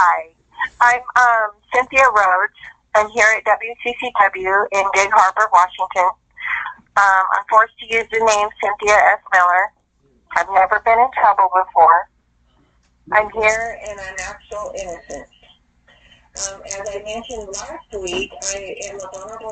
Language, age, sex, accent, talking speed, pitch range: English, 30-49, female, American, 150 wpm, 175-220 Hz